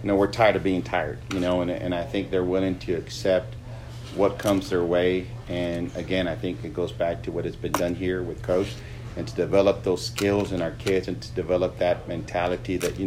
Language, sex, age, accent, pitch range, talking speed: English, male, 40-59, American, 90-115 Hz, 235 wpm